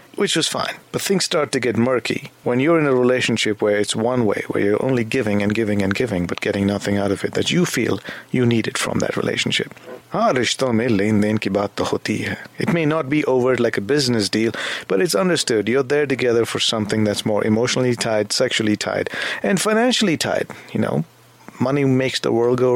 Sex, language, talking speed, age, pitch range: male, English, 195 wpm, 40-59, 115-160 Hz